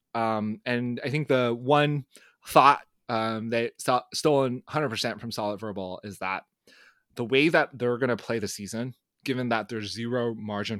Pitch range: 105-130 Hz